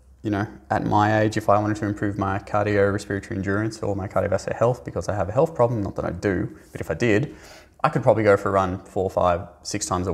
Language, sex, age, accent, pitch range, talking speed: English, male, 20-39, Australian, 90-115 Hz, 255 wpm